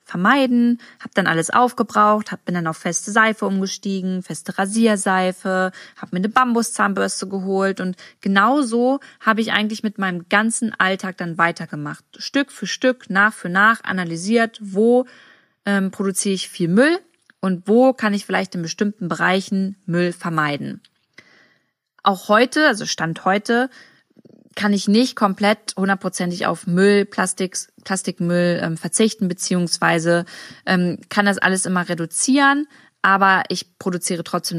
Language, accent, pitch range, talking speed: German, German, 180-220 Hz, 140 wpm